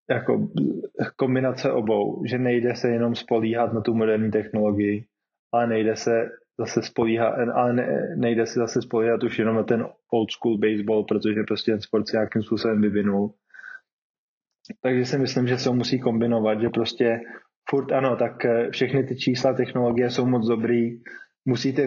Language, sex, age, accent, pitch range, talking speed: Czech, male, 20-39, native, 115-130 Hz, 155 wpm